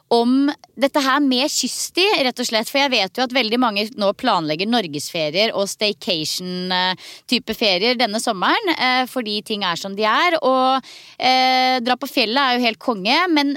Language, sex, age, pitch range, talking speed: English, female, 20-39, 215-285 Hz, 200 wpm